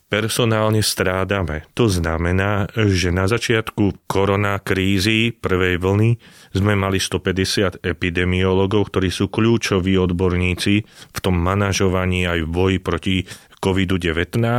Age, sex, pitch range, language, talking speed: 30-49, male, 90-105 Hz, Slovak, 105 wpm